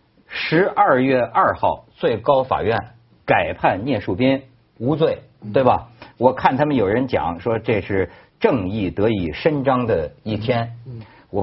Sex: male